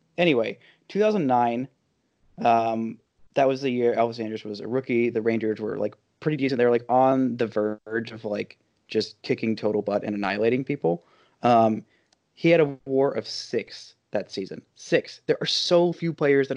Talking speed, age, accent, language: 180 wpm, 20-39, American, English